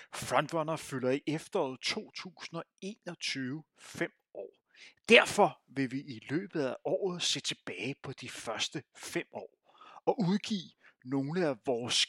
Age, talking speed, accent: 30-49, 130 wpm, native